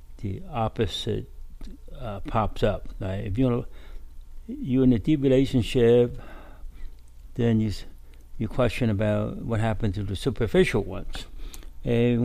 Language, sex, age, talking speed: English, male, 60-79, 125 wpm